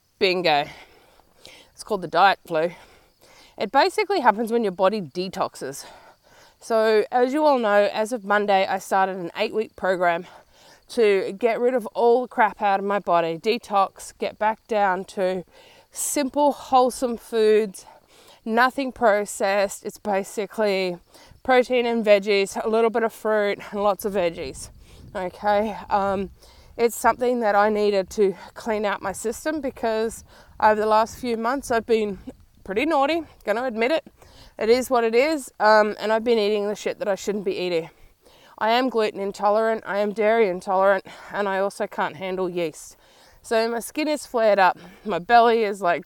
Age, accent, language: 20-39, Australian, English